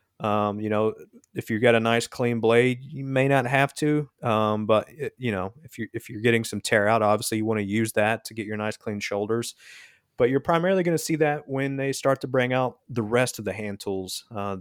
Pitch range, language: 105-120 Hz, English